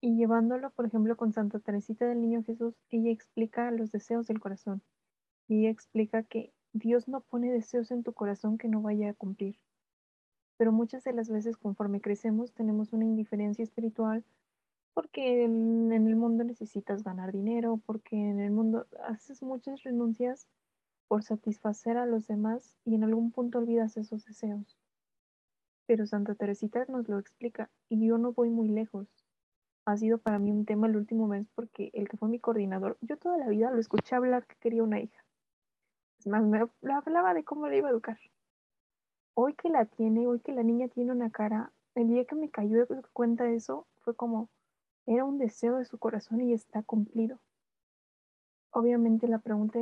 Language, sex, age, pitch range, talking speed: Spanish, female, 20-39, 215-240 Hz, 180 wpm